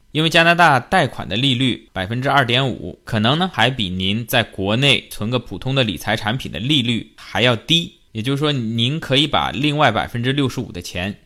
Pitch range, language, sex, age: 100-125 Hz, Chinese, male, 20-39